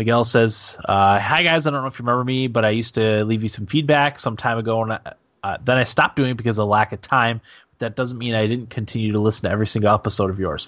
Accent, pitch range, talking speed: American, 105-125 Hz, 285 wpm